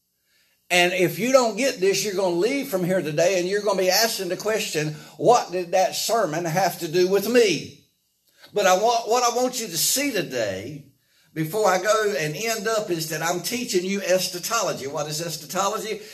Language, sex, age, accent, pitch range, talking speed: English, male, 60-79, American, 160-205 Hz, 205 wpm